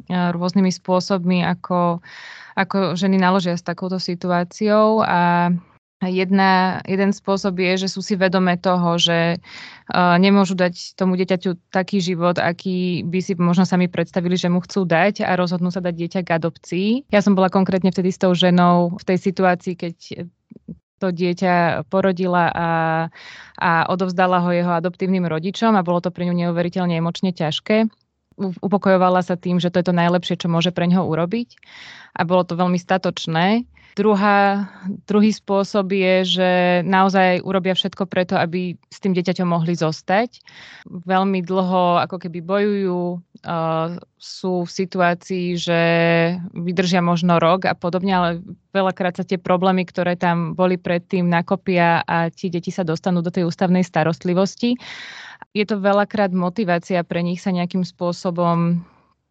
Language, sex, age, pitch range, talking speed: Slovak, female, 20-39, 175-190 Hz, 150 wpm